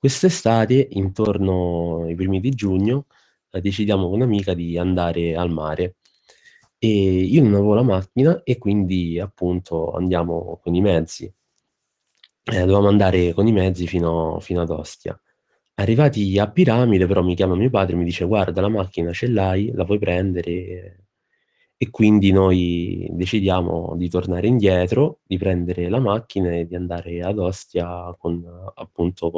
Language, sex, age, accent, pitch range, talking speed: Italian, male, 20-39, native, 85-105 Hz, 150 wpm